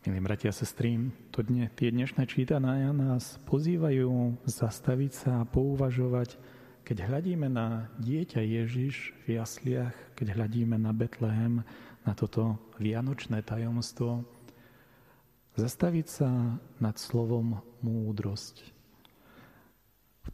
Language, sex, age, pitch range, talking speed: Slovak, male, 40-59, 115-135 Hz, 105 wpm